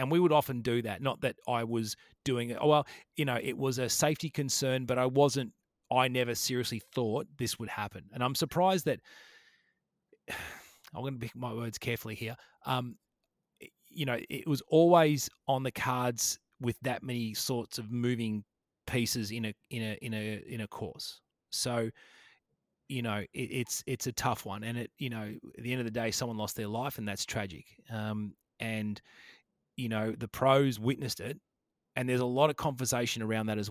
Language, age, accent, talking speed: English, 30-49, Australian, 200 wpm